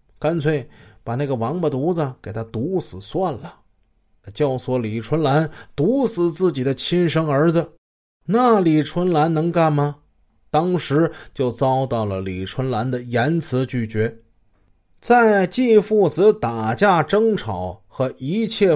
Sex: male